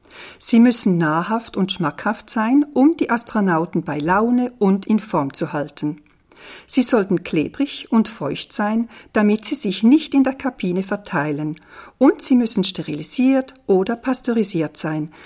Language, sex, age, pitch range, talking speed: French, female, 50-69, 175-250 Hz, 145 wpm